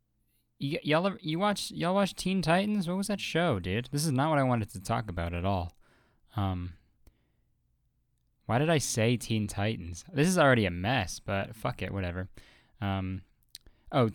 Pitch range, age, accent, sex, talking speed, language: 100-135 Hz, 20-39, American, male, 180 wpm, English